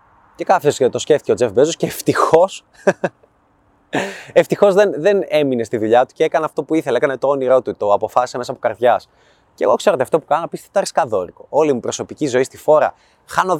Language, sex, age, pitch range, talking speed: Greek, male, 20-39, 125-190 Hz, 205 wpm